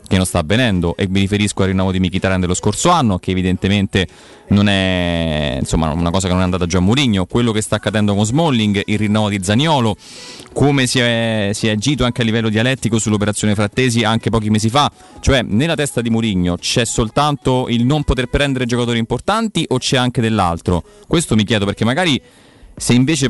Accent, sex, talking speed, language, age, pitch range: native, male, 200 wpm, Italian, 30-49, 100-125 Hz